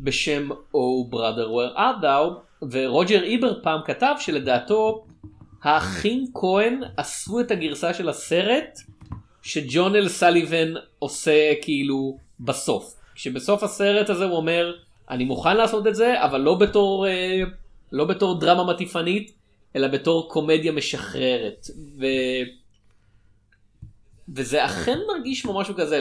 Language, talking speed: Hebrew, 110 wpm